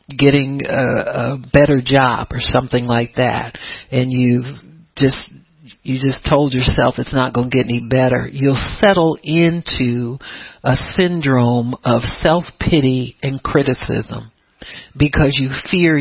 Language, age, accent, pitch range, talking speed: English, 60-79, American, 125-155 Hz, 130 wpm